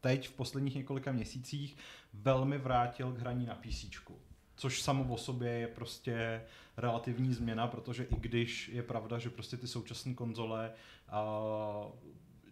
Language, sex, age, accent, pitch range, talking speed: Czech, male, 30-49, native, 110-125 Hz, 145 wpm